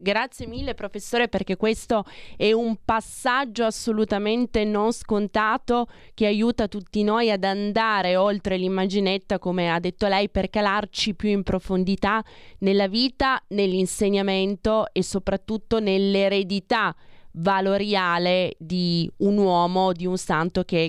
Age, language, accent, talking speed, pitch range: 20-39, Italian, native, 120 wpm, 185-225 Hz